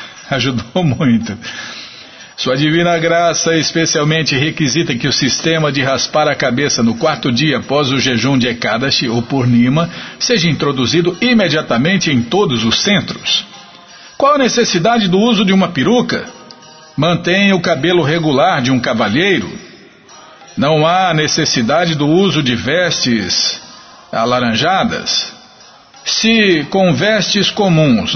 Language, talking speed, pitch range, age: Portuguese, 125 wpm, 130-185 Hz, 50-69